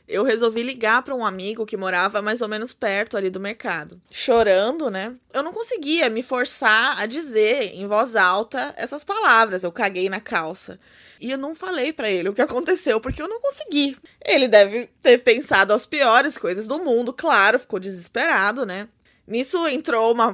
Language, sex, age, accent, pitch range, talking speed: Portuguese, female, 20-39, Brazilian, 220-290 Hz, 185 wpm